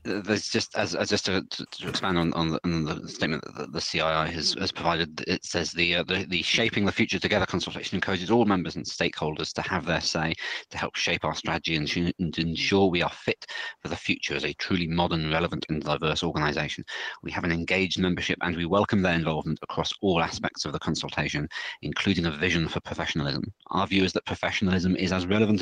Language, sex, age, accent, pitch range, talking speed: English, male, 30-49, British, 80-95 Hz, 220 wpm